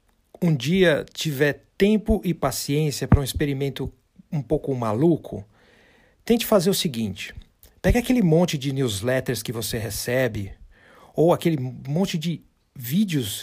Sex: male